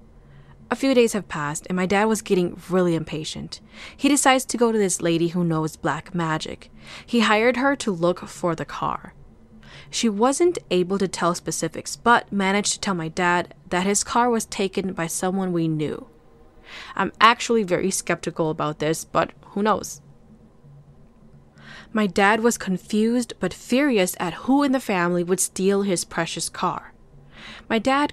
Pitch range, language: 165-220 Hz, English